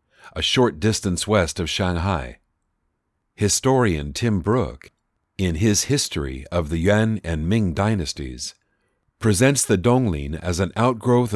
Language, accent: English, American